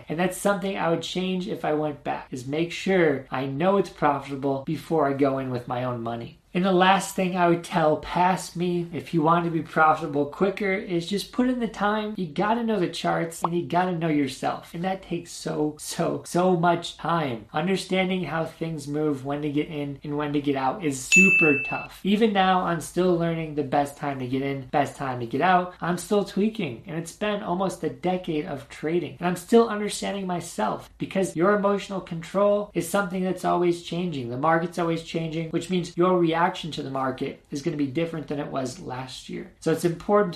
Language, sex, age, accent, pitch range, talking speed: English, male, 20-39, American, 150-180 Hz, 215 wpm